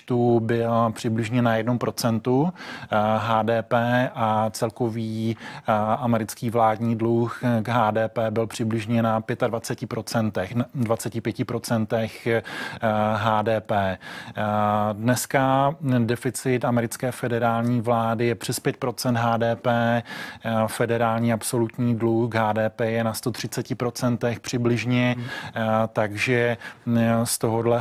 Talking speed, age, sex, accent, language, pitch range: 85 wpm, 20-39, male, native, Czech, 115-120 Hz